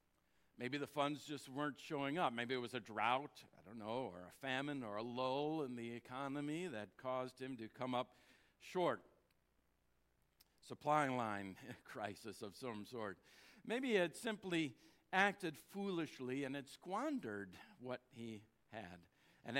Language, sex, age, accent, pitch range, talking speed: English, male, 60-79, American, 105-150 Hz, 155 wpm